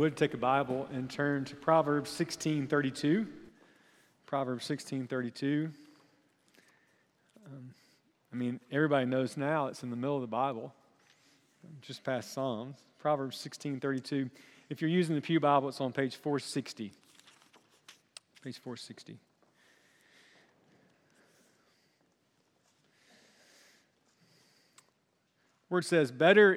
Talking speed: 100 wpm